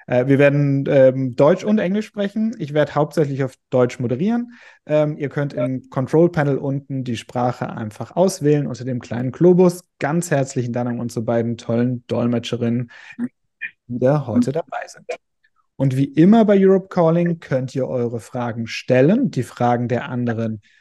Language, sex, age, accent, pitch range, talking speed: German, male, 30-49, German, 125-165 Hz, 160 wpm